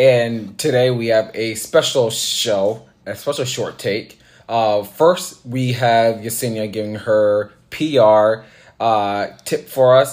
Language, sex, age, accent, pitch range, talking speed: English, male, 20-39, American, 110-130 Hz, 135 wpm